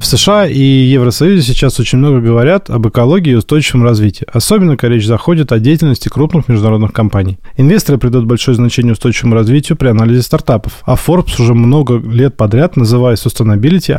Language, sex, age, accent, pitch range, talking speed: Russian, male, 20-39, native, 110-140 Hz, 165 wpm